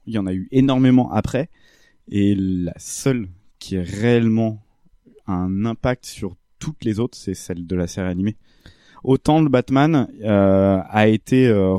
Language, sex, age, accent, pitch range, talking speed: French, male, 20-39, French, 95-120 Hz, 165 wpm